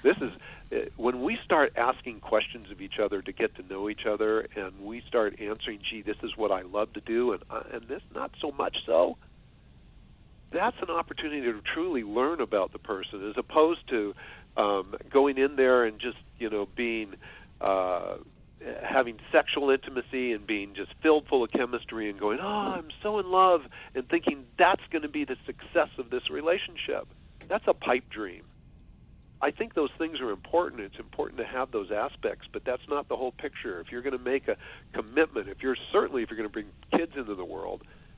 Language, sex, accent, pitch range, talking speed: English, male, American, 105-170 Hz, 200 wpm